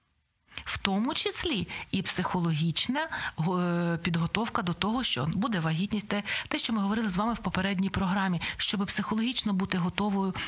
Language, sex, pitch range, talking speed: Ukrainian, female, 175-220 Hz, 135 wpm